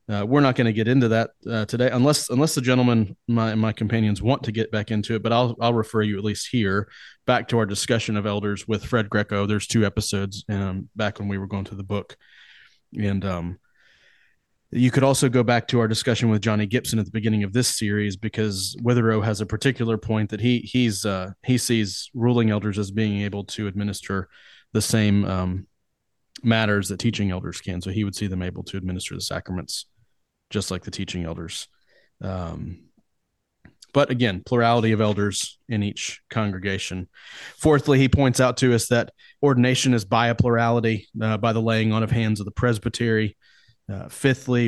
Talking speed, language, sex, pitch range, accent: 195 wpm, English, male, 105-120 Hz, American